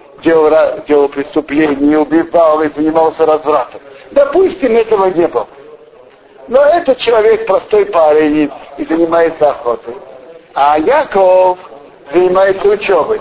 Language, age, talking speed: Russian, 50-69, 115 wpm